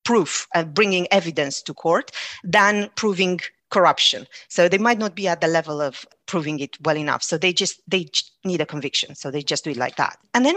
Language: English